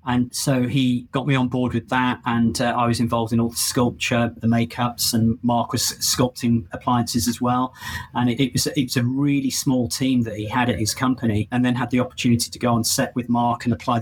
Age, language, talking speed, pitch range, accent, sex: 30-49, English, 235 wpm, 115-130 Hz, British, male